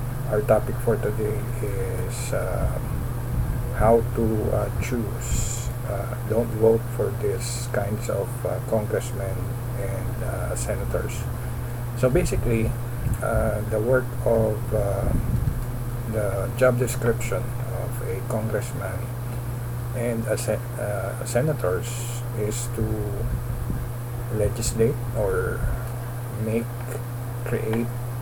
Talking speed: 95 wpm